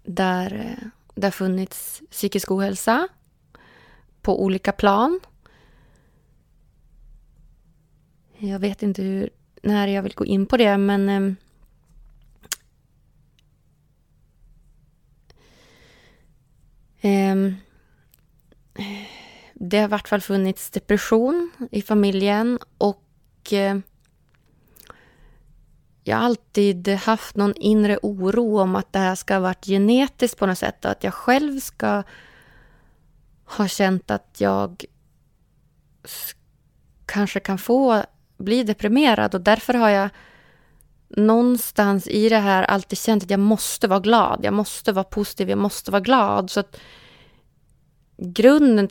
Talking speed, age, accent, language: 110 wpm, 20-39, native, Swedish